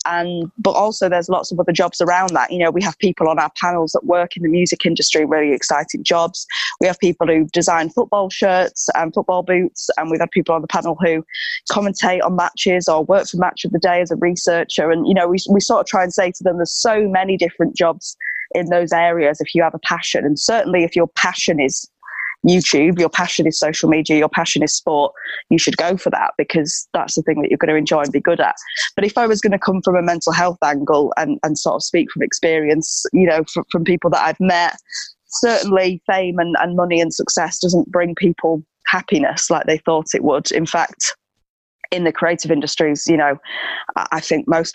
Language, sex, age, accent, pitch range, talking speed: English, female, 20-39, British, 165-185 Hz, 230 wpm